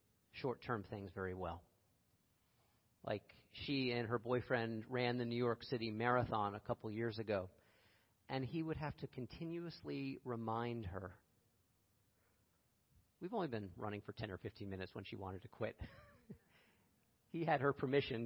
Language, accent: English, American